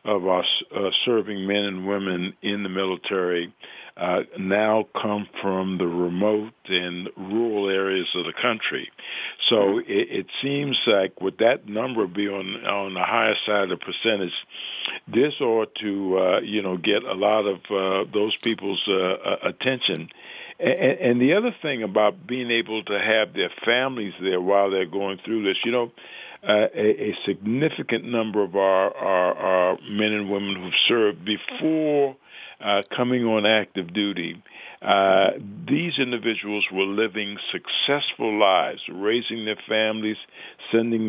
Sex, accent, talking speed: male, American, 150 wpm